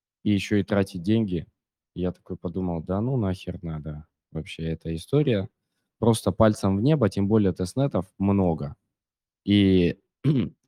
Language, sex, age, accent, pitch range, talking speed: Russian, male, 20-39, native, 85-100 Hz, 140 wpm